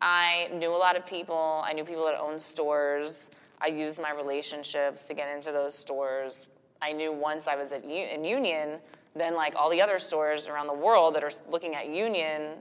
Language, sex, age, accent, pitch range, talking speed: English, female, 20-39, American, 145-175 Hz, 210 wpm